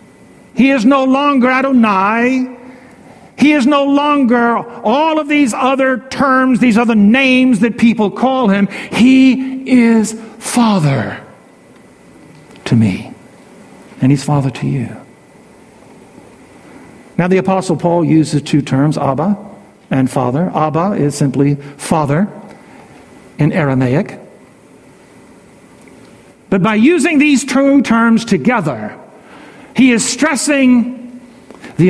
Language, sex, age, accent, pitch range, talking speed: English, male, 60-79, American, 150-240 Hz, 110 wpm